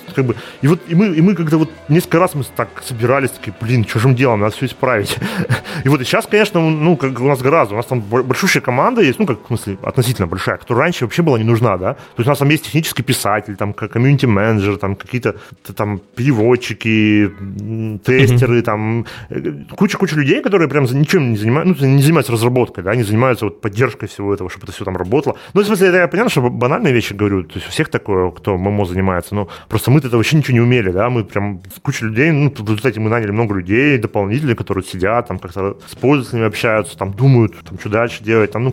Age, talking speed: 30-49, 225 wpm